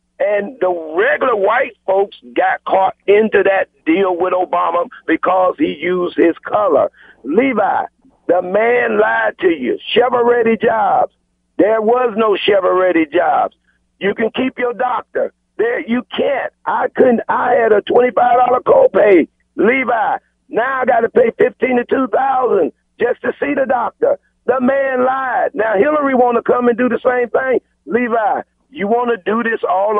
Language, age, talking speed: English, 50-69, 160 wpm